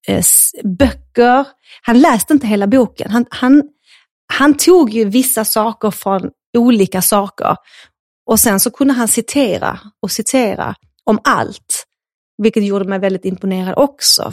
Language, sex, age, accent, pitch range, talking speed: Swedish, female, 30-49, native, 190-240 Hz, 135 wpm